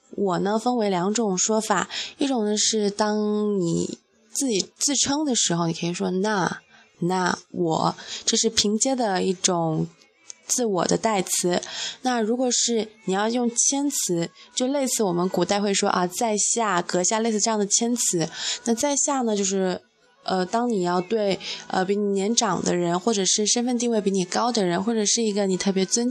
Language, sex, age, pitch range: Chinese, female, 20-39, 180-235 Hz